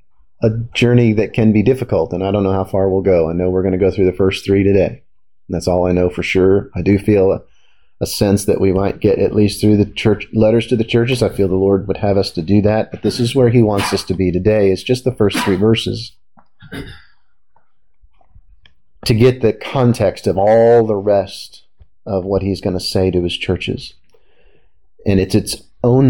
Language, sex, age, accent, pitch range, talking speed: English, male, 40-59, American, 95-115 Hz, 225 wpm